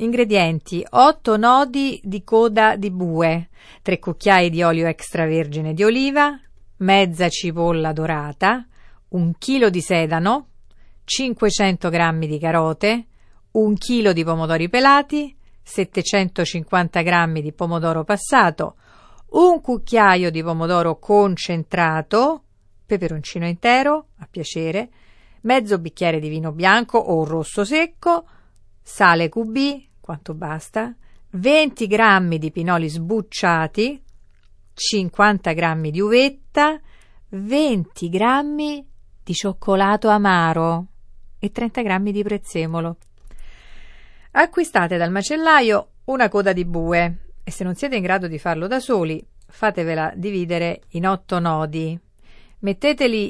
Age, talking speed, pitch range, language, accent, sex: 50-69, 110 wpm, 165-220 Hz, Italian, native, female